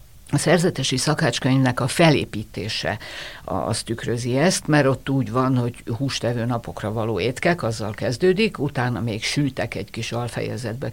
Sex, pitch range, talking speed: female, 115-150 Hz, 135 wpm